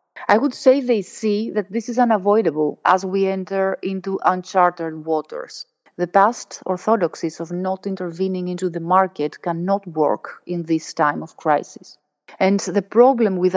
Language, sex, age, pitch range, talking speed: English, female, 30-49, 170-205 Hz, 155 wpm